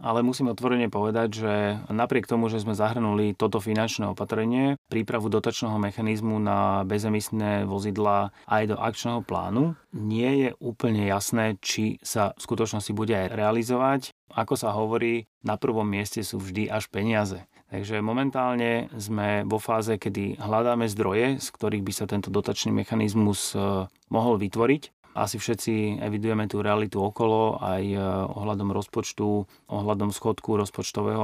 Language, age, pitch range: Slovak, 30-49, 100-115 Hz